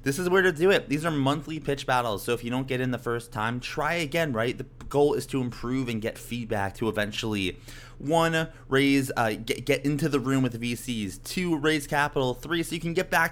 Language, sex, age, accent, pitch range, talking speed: English, male, 20-39, American, 115-145 Hz, 240 wpm